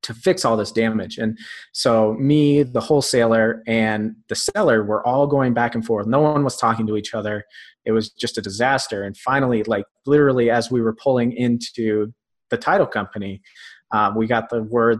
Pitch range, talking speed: 110-130 Hz, 190 wpm